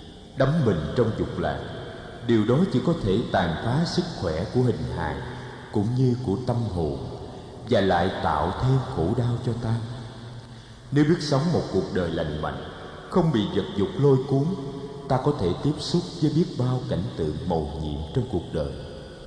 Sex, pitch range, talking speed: male, 100-140 Hz, 185 wpm